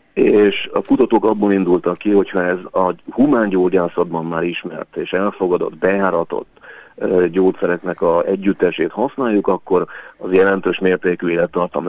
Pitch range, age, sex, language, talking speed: 90-105 Hz, 40-59, male, Hungarian, 125 wpm